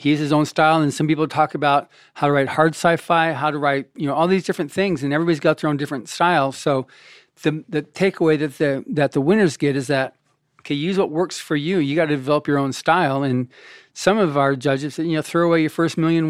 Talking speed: 255 wpm